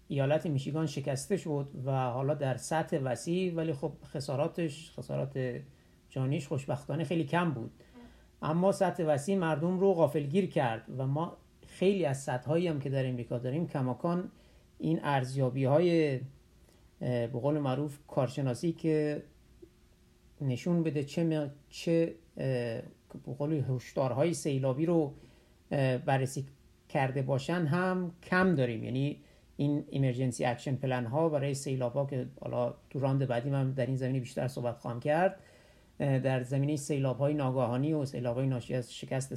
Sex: male